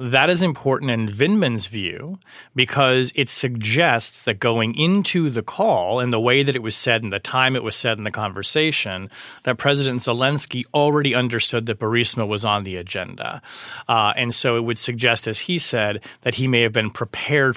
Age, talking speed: 30-49, 190 wpm